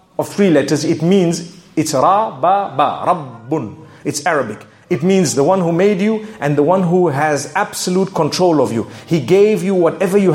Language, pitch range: English, 150-210 Hz